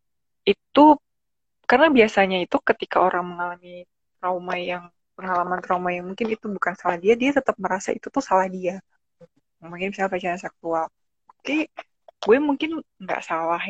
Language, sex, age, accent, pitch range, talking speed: Indonesian, female, 20-39, native, 180-230 Hz, 140 wpm